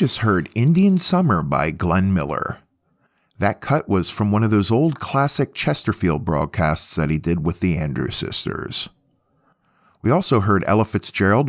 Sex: male